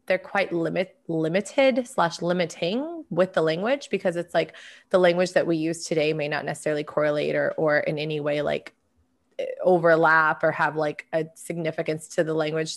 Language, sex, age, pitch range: English, female, 20-39, 160-185 Hz